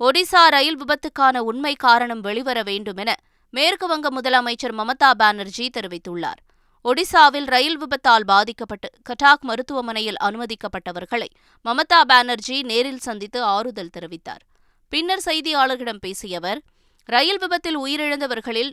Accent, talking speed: native, 105 wpm